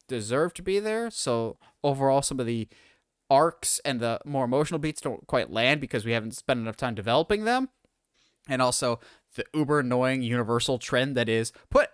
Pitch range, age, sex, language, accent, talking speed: 120-175 Hz, 20-39, male, English, American, 180 wpm